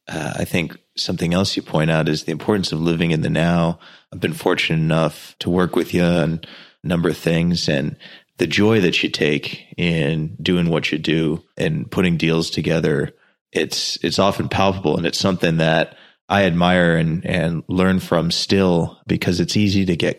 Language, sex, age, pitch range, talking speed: English, male, 30-49, 85-95 Hz, 190 wpm